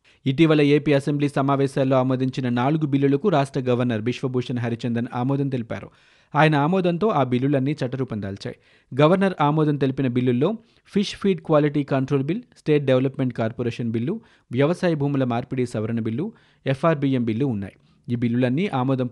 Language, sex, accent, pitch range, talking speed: Telugu, male, native, 120-145 Hz, 135 wpm